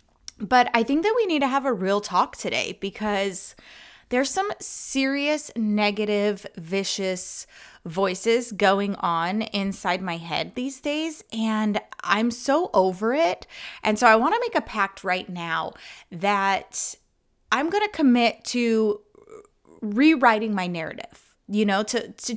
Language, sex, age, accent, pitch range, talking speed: English, female, 20-39, American, 200-265 Hz, 145 wpm